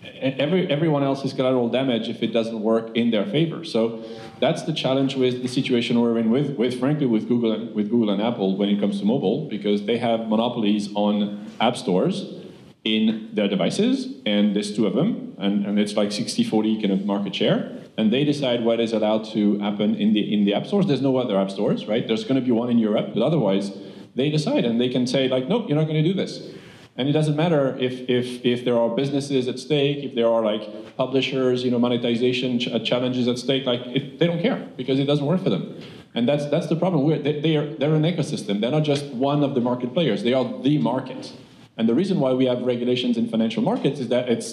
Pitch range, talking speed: 115-140 Hz, 240 wpm